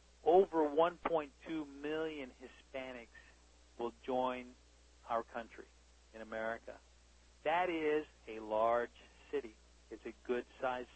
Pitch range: 100-135 Hz